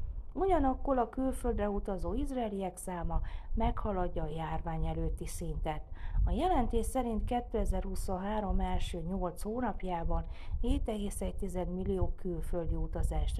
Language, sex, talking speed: Hungarian, female, 100 wpm